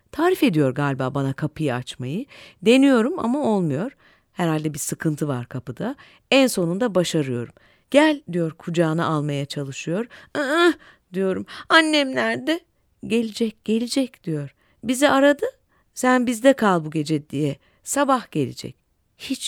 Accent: native